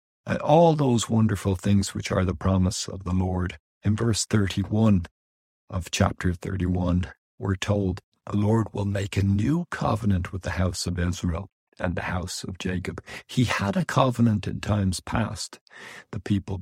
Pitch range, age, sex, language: 95-110 Hz, 60-79, male, English